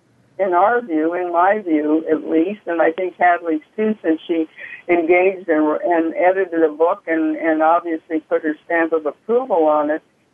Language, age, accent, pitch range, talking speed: English, 60-79, American, 160-195 Hz, 180 wpm